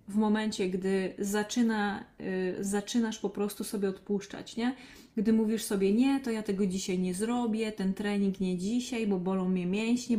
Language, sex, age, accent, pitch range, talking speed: Polish, female, 20-39, native, 200-230 Hz, 170 wpm